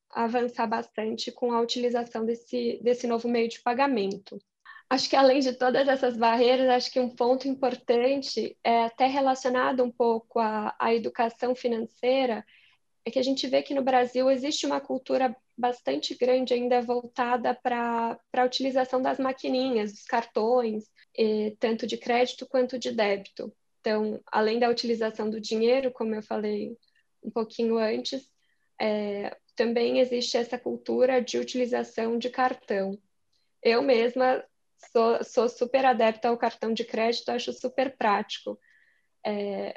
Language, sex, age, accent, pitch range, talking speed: Portuguese, female, 10-29, Brazilian, 230-255 Hz, 145 wpm